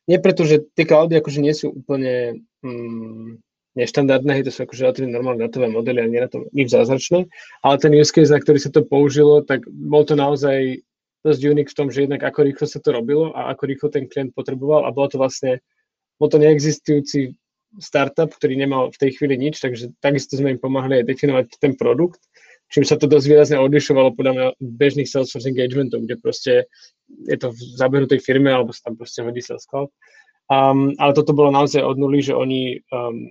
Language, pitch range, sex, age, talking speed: Czech, 130-150 Hz, male, 20-39, 200 wpm